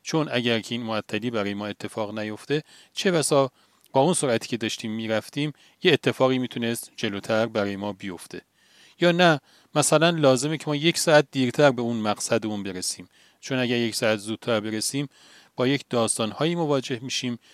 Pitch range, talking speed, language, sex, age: 110-145 Hz, 165 wpm, Persian, male, 40-59